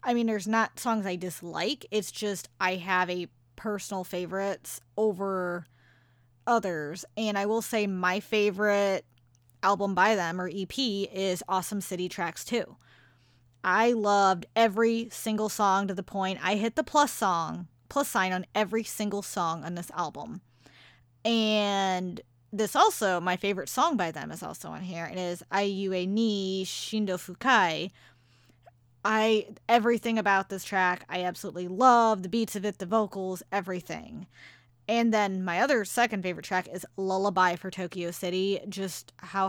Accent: American